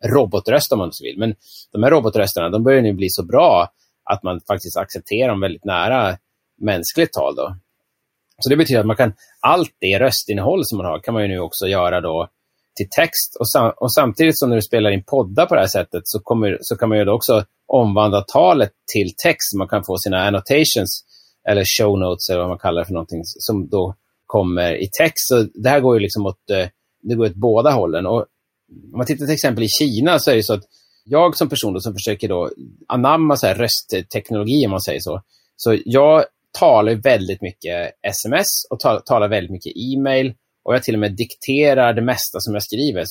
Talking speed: 215 wpm